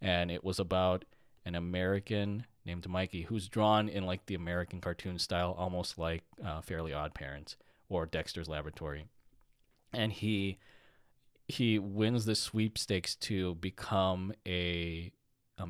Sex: male